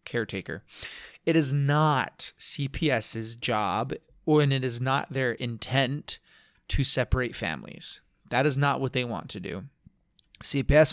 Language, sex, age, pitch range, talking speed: English, male, 30-49, 115-140 Hz, 130 wpm